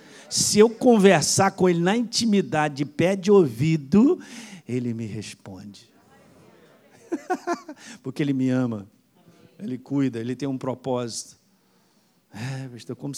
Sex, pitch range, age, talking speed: male, 130-185 Hz, 50-69, 110 wpm